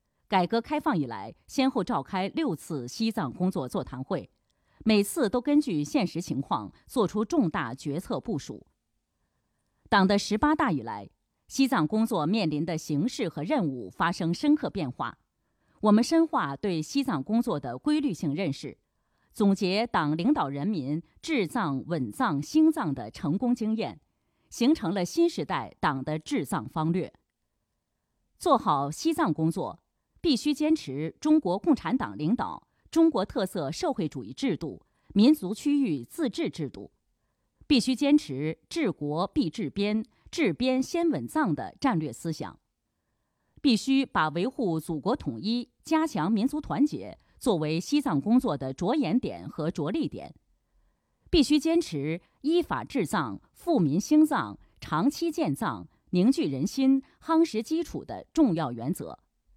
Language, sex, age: Chinese, female, 30-49